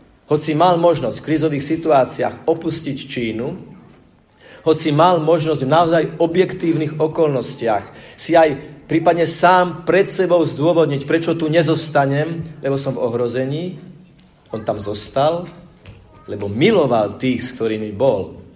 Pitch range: 120-155 Hz